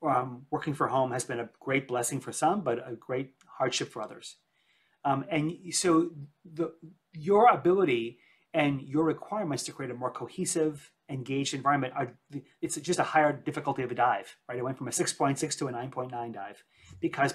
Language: English